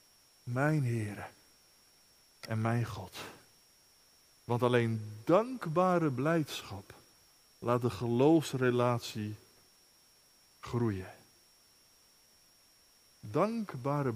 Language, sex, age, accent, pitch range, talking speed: Dutch, male, 50-69, Dutch, 110-135 Hz, 60 wpm